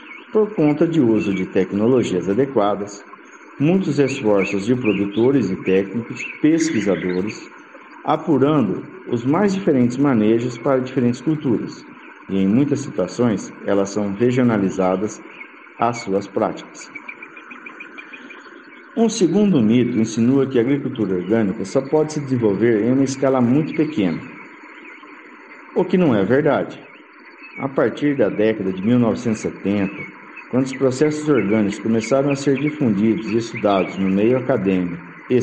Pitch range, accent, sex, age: 100-150 Hz, Brazilian, male, 50-69